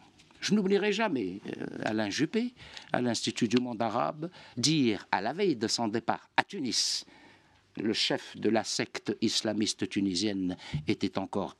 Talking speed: 145 wpm